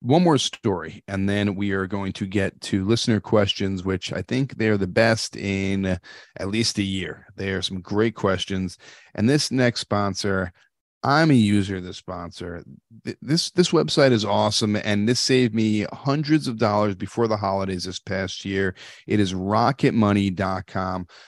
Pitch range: 95-115 Hz